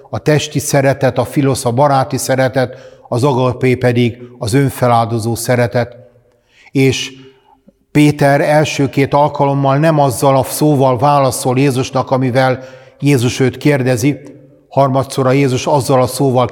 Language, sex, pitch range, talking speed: Hungarian, male, 125-140 Hz, 125 wpm